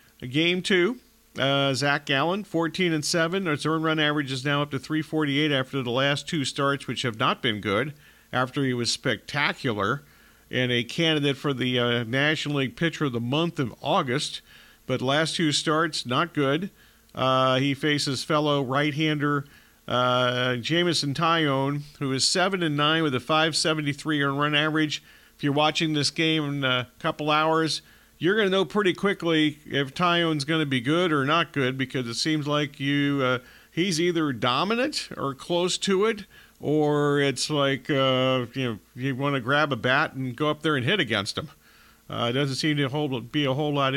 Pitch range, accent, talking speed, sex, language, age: 135-160 Hz, American, 190 wpm, male, English, 50-69